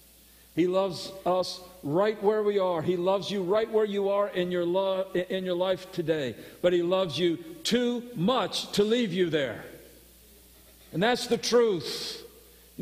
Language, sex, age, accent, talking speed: English, male, 50-69, American, 170 wpm